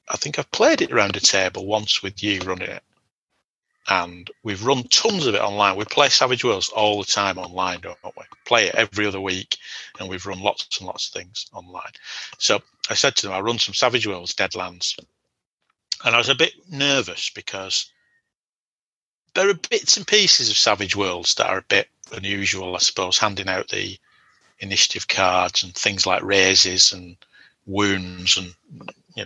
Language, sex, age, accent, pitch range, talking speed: English, male, 40-59, British, 95-125 Hz, 185 wpm